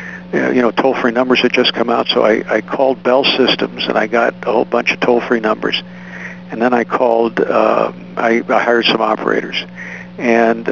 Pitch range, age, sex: 110-135 Hz, 60-79, male